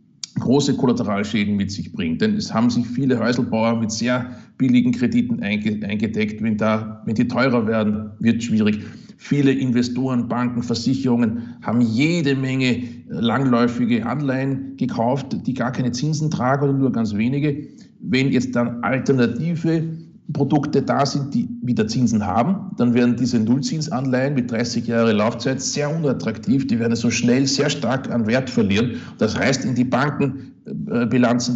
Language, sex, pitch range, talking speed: German, male, 115-140 Hz, 150 wpm